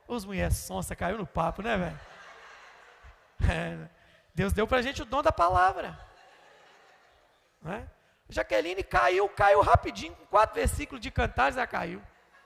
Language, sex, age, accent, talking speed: Portuguese, male, 20-39, Brazilian, 140 wpm